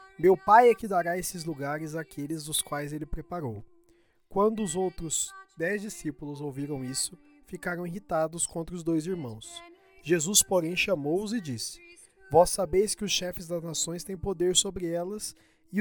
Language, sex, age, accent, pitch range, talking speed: Portuguese, male, 20-39, Brazilian, 160-205 Hz, 160 wpm